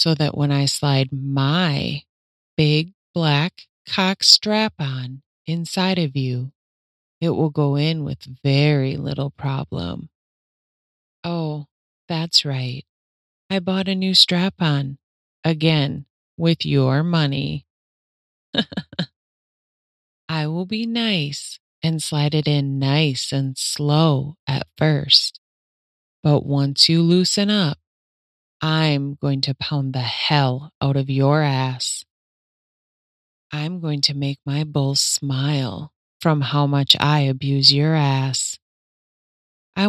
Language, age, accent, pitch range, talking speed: English, 30-49, American, 135-160 Hz, 115 wpm